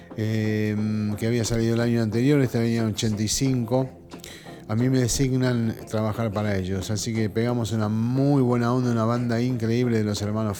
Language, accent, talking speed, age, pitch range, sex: Spanish, Argentinian, 175 wpm, 40-59, 95-115 Hz, male